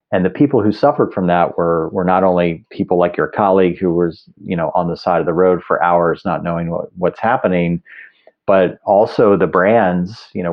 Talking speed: 215 wpm